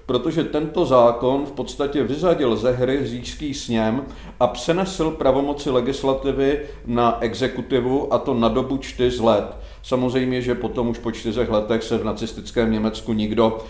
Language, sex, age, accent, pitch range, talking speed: Czech, male, 40-59, native, 115-135 Hz, 145 wpm